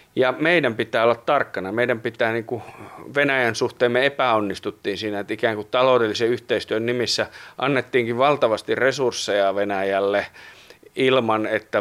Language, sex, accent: Finnish, male, native